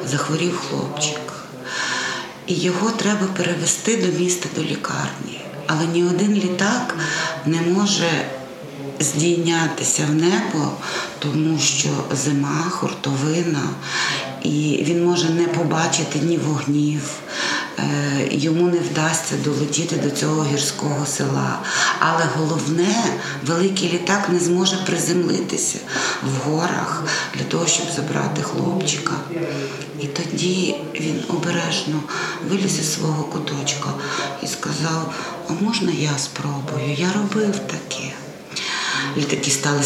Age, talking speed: 40-59, 110 wpm